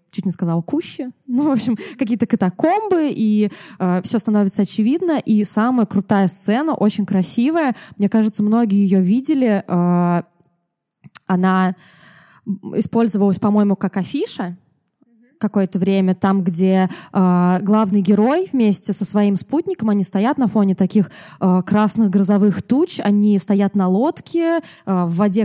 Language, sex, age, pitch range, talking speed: Russian, female, 20-39, 185-240 Hz, 135 wpm